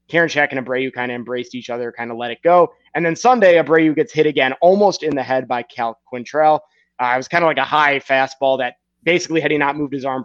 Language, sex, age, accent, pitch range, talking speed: English, male, 20-39, American, 125-160 Hz, 265 wpm